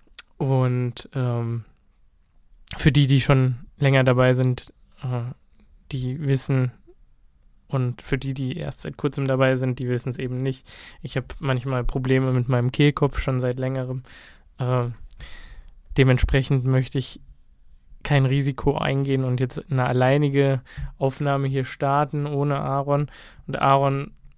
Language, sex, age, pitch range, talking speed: German, male, 20-39, 125-140 Hz, 135 wpm